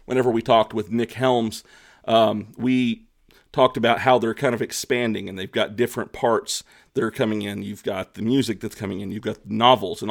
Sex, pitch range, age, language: male, 110-125 Hz, 30-49, English